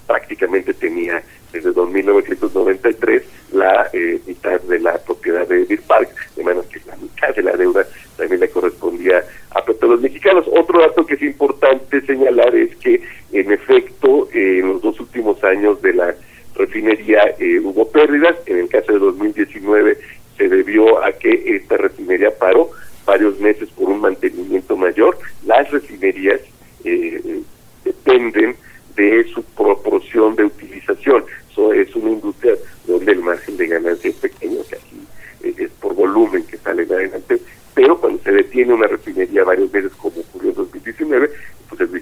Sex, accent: male, Mexican